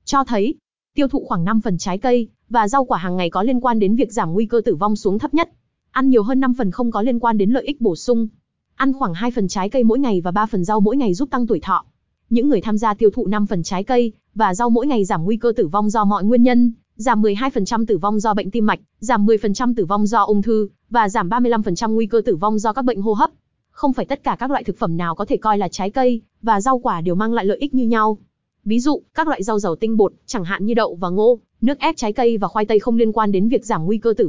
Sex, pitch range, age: female, 205-245 Hz, 20-39